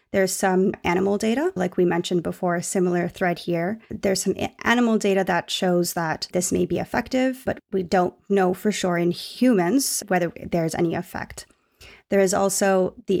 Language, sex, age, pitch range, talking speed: English, female, 20-39, 180-200 Hz, 175 wpm